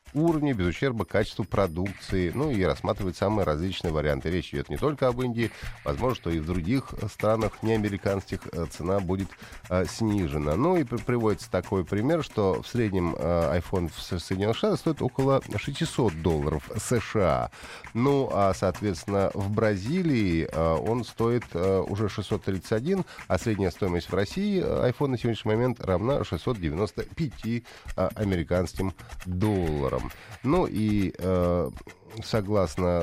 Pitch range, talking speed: 90-120 Hz, 135 wpm